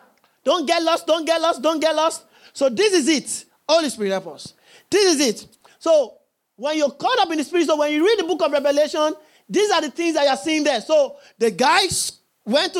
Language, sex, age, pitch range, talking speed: English, male, 40-59, 295-355 Hz, 230 wpm